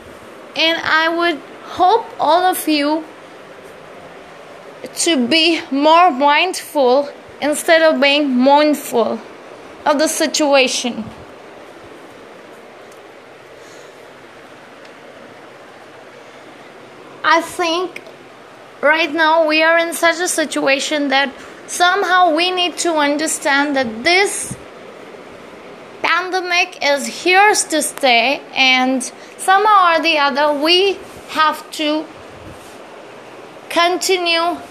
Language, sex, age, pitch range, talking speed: English, female, 20-39, 285-345 Hz, 85 wpm